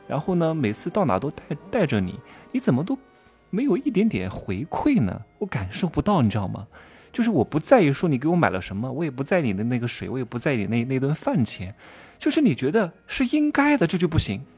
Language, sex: Chinese, male